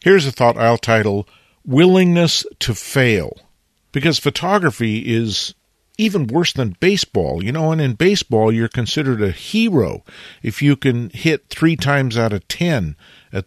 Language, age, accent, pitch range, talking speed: English, 50-69, American, 105-145 Hz, 150 wpm